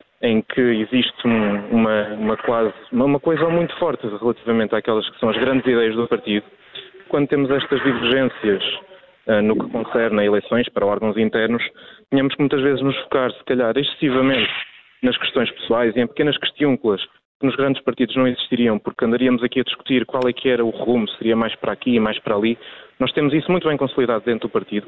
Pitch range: 115-135 Hz